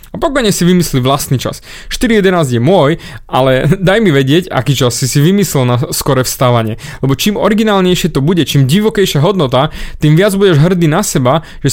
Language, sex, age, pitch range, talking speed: Slovak, male, 20-39, 130-180 Hz, 180 wpm